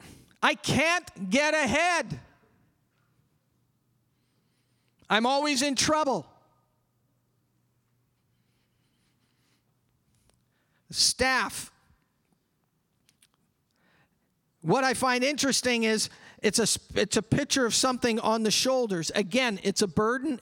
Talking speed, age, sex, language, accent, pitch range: 80 wpm, 40-59, male, English, American, 160-225 Hz